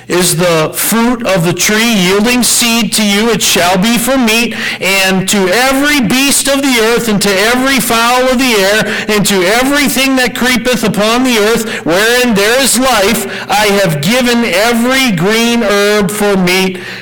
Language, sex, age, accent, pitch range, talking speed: English, male, 50-69, American, 185-250 Hz, 175 wpm